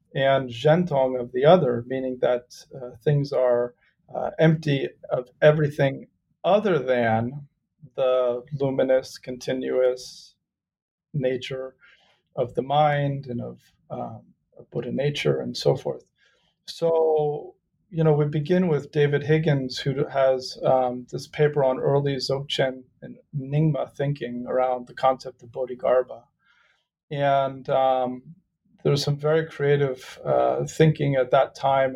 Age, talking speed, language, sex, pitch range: 40-59, 130 wpm, English, male, 125-150 Hz